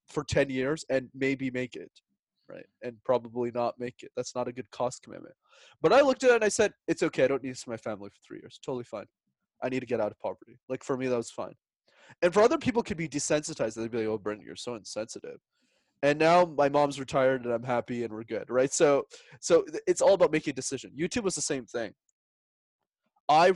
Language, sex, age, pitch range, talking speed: English, male, 20-39, 130-180 Hz, 245 wpm